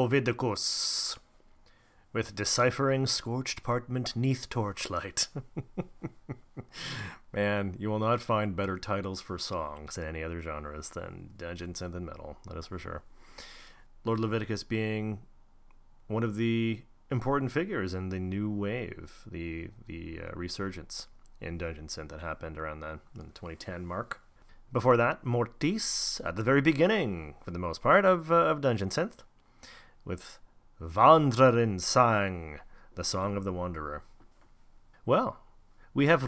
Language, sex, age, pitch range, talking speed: English, male, 30-49, 90-125 Hz, 135 wpm